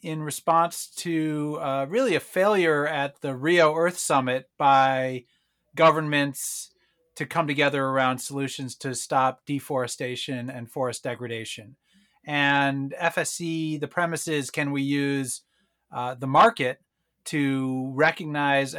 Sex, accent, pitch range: male, American, 130-155 Hz